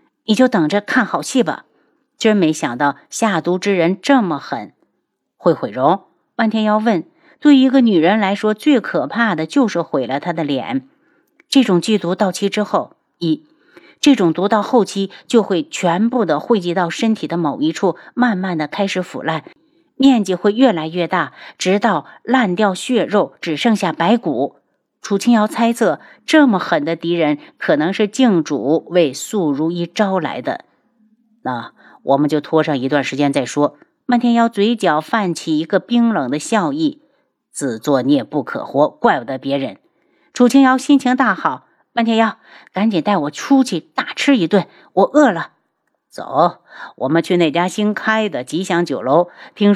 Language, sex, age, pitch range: Chinese, female, 50-69, 170-245 Hz